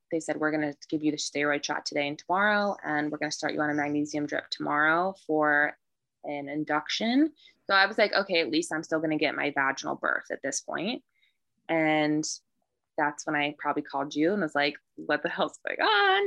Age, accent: 20-39, American